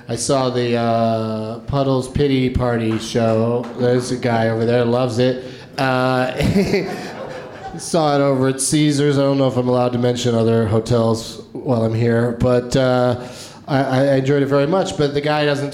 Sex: male